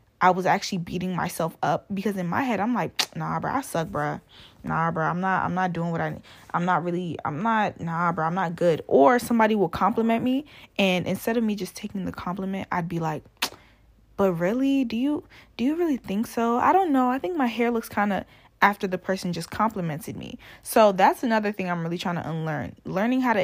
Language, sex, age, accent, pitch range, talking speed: English, female, 20-39, American, 180-235 Hz, 230 wpm